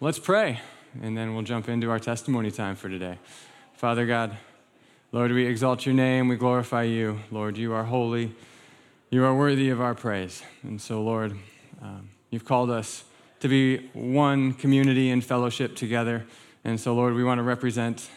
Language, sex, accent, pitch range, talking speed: English, male, American, 110-135 Hz, 175 wpm